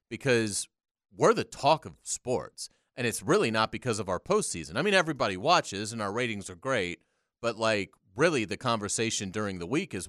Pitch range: 90-115 Hz